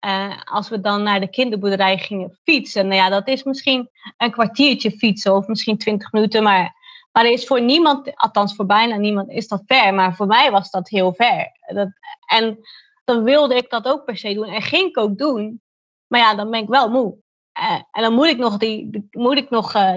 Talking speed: 220 wpm